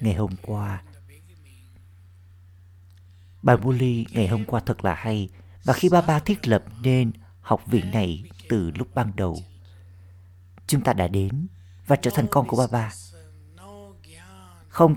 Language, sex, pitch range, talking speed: Vietnamese, male, 90-120 Hz, 150 wpm